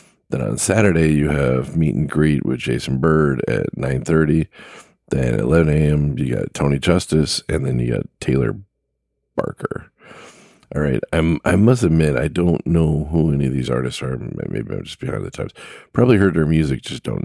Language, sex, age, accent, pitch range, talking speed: English, male, 40-59, American, 70-95 Hz, 190 wpm